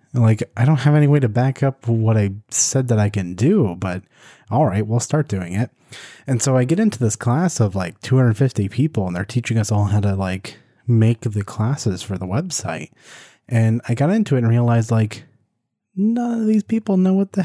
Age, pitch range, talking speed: 20-39, 105-135 Hz, 215 wpm